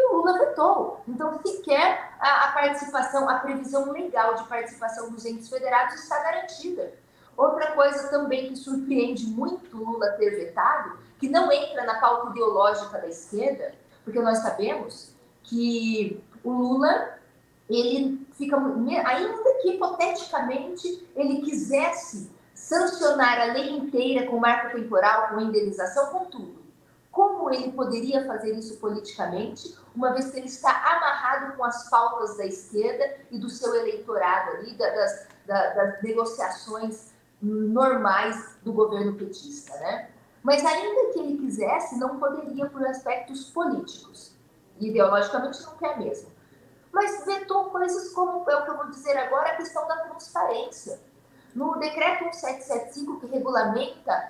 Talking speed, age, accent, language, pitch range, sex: 135 wpm, 40-59, Brazilian, Portuguese, 230-310 Hz, female